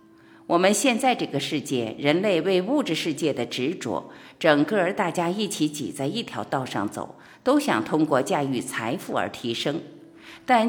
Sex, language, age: female, Chinese, 50-69